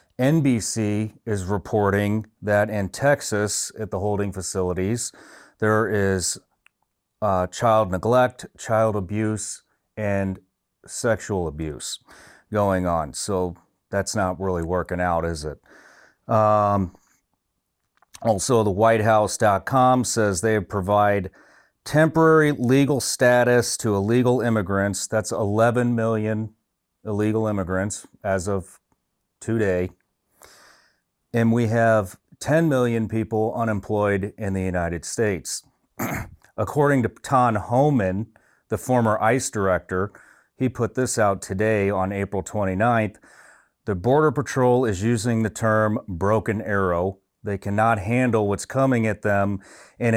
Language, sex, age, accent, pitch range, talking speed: English, male, 40-59, American, 100-115 Hz, 115 wpm